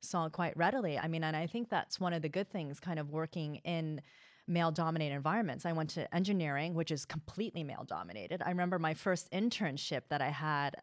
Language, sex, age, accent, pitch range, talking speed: English, female, 30-49, American, 155-205 Hz, 200 wpm